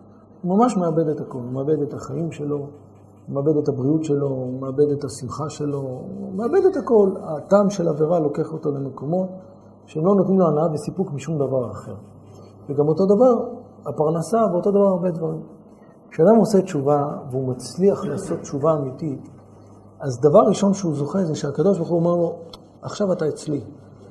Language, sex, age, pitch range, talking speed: Hebrew, male, 50-69, 130-190 Hz, 170 wpm